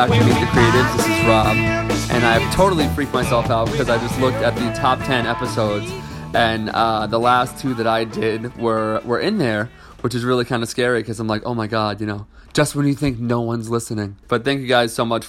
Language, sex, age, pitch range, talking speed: English, male, 20-39, 110-125 Hz, 235 wpm